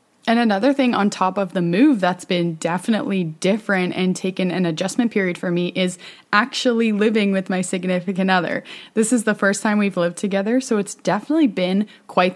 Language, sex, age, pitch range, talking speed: English, female, 20-39, 175-210 Hz, 190 wpm